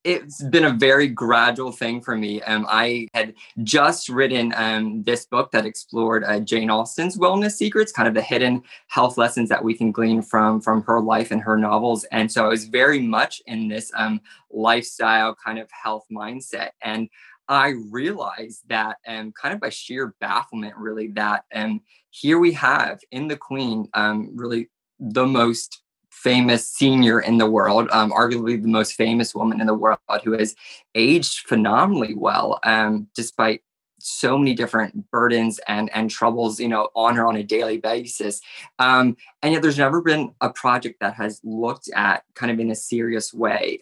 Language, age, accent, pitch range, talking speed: English, 20-39, American, 110-130 Hz, 185 wpm